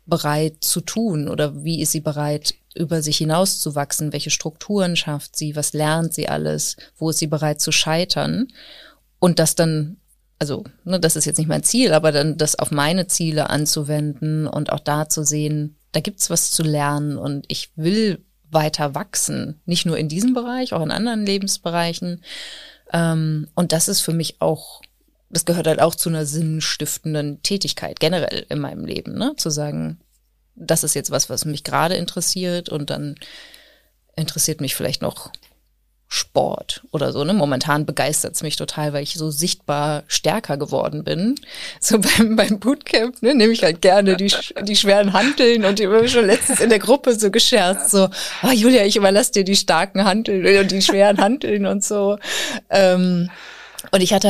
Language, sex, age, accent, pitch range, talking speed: German, female, 20-39, German, 155-205 Hz, 180 wpm